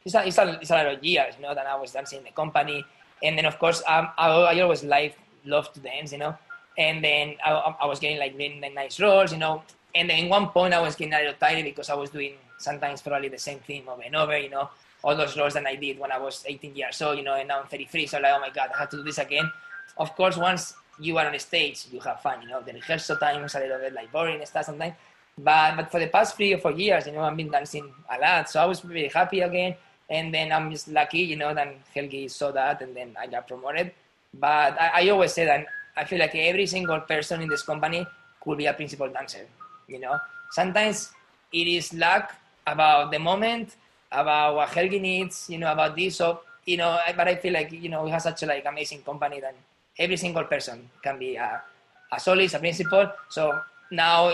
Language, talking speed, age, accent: English, 255 wpm, 20-39, Spanish